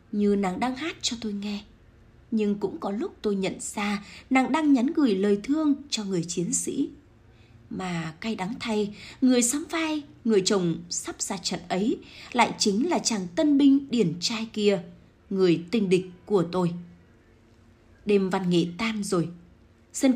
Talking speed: 170 wpm